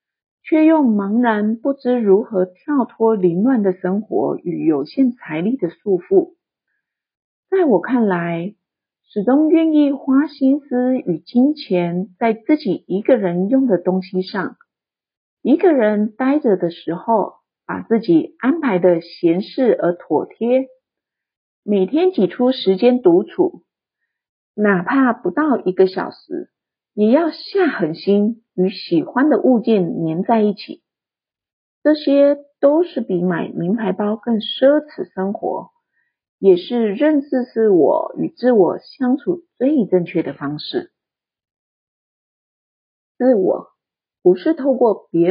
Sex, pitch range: female, 190-285 Hz